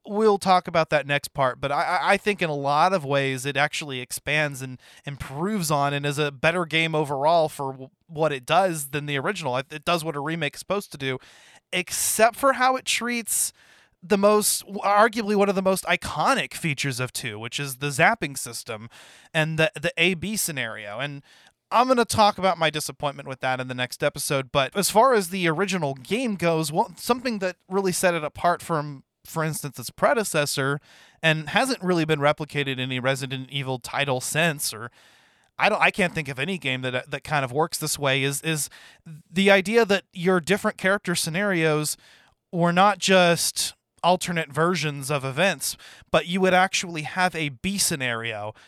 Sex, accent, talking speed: male, American, 190 wpm